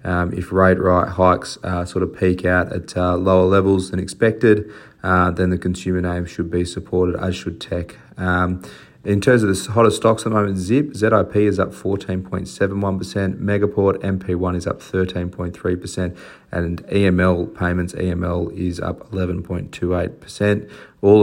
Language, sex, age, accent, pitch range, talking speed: English, male, 30-49, Australian, 90-100 Hz, 210 wpm